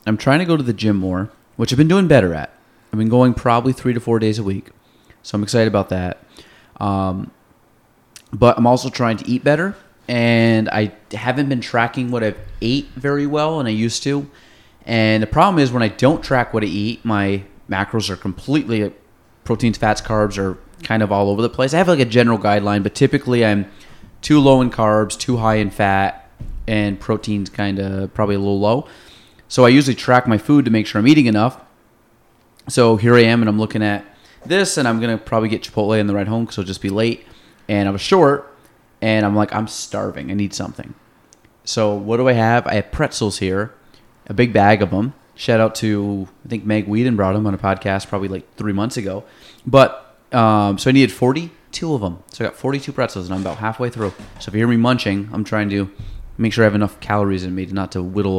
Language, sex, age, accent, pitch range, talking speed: English, male, 30-49, American, 100-120 Hz, 225 wpm